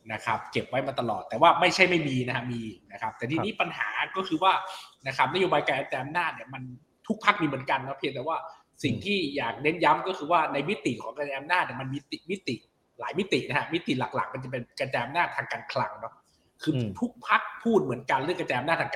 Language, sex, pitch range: Thai, male, 125-165 Hz